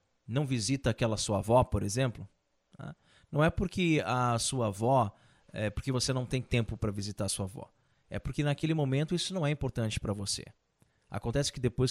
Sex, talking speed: male, 185 wpm